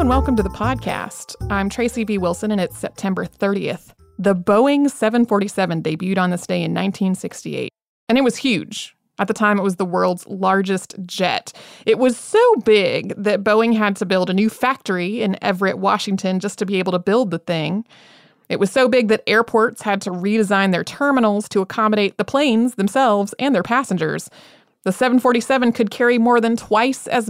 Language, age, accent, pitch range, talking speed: English, 30-49, American, 190-240 Hz, 185 wpm